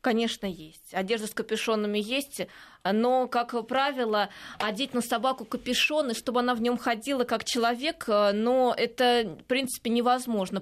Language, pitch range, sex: Russian, 215-250 Hz, female